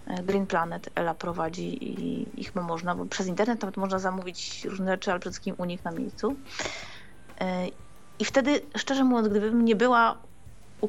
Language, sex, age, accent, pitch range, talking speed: Polish, female, 30-49, native, 200-240 Hz, 165 wpm